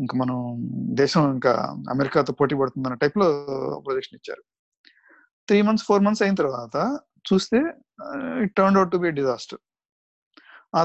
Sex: male